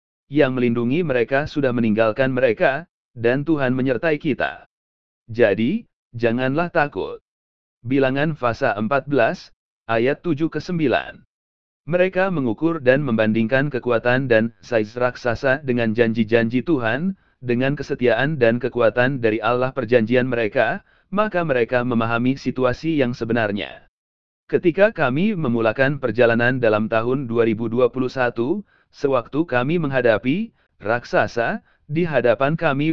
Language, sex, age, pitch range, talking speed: English, male, 40-59, 120-150 Hz, 110 wpm